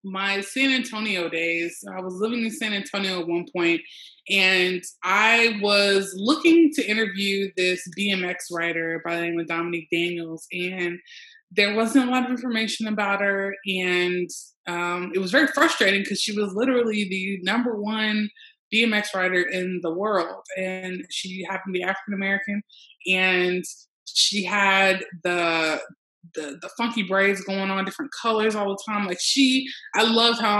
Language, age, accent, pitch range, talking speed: English, 20-39, American, 180-220 Hz, 160 wpm